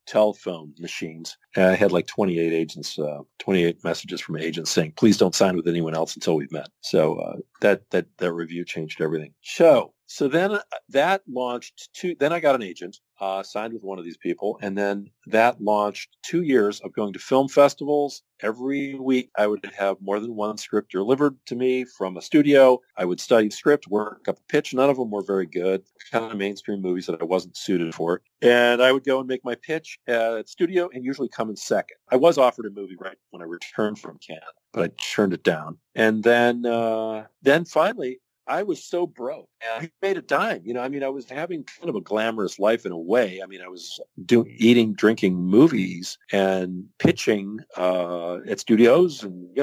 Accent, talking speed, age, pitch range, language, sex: American, 210 wpm, 40-59, 95-130 Hz, English, male